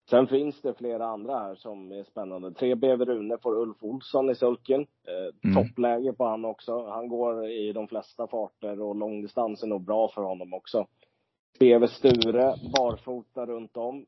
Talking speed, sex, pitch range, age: 170 wpm, male, 100-115 Hz, 20-39